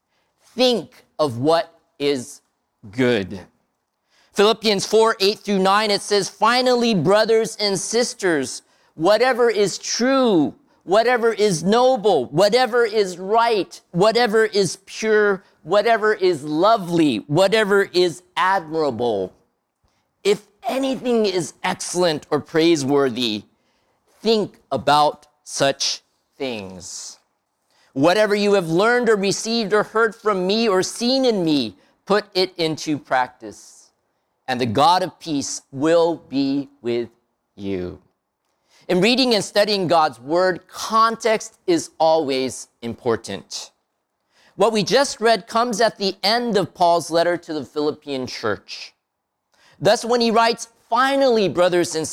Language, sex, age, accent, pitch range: Japanese, male, 50-69, American, 155-225 Hz